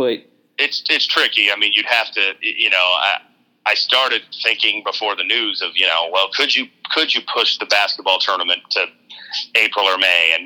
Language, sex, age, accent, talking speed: English, male, 30-49, American, 195 wpm